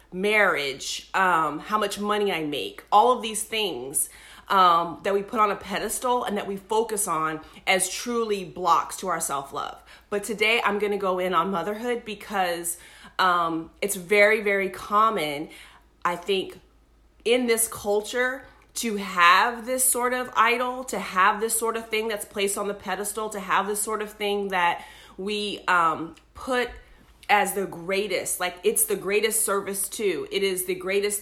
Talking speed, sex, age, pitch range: 170 wpm, female, 30-49, 185-215 Hz